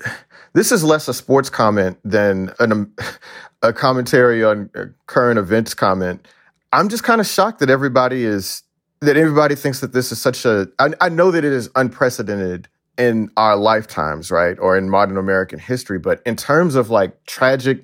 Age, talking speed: 40-59, 175 wpm